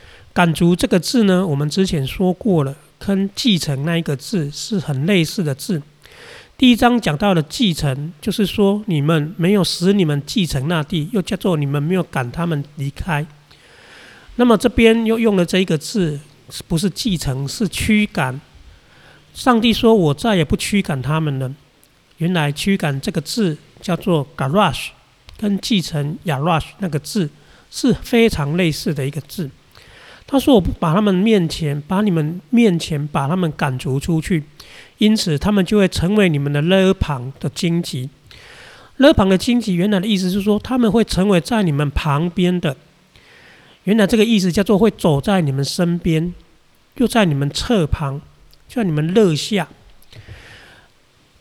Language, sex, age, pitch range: Chinese, male, 40-59, 150-205 Hz